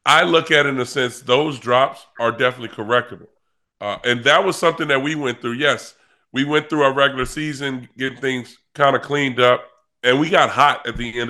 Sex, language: female, English